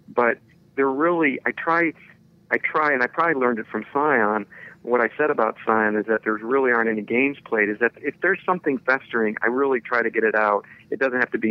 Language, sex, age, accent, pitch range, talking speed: English, male, 40-59, American, 105-130 Hz, 235 wpm